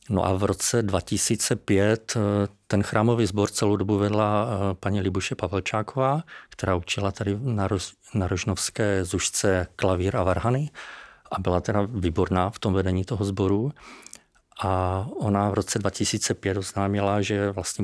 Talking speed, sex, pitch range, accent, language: 135 wpm, male, 95-105 Hz, native, Czech